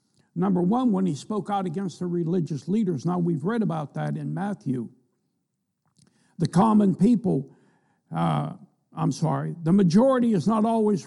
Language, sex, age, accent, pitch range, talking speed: English, male, 60-79, American, 155-200 Hz, 150 wpm